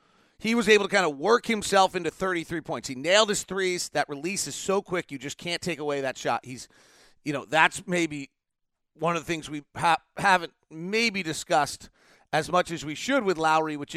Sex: male